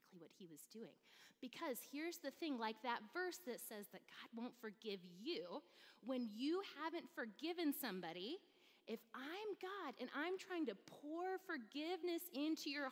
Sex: female